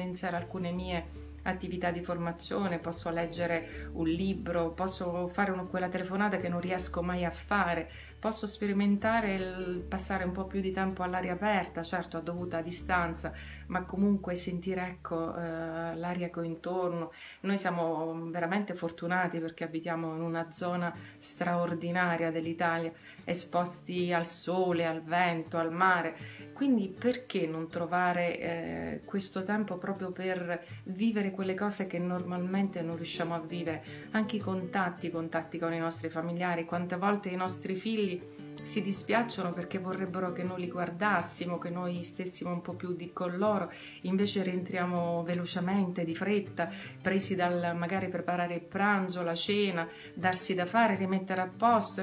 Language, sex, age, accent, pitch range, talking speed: Italian, female, 30-49, native, 170-190 Hz, 150 wpm